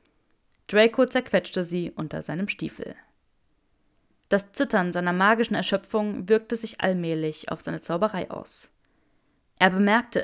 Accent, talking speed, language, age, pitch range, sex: German, 115 wpm, German, 20-39, 175-220 Hz, female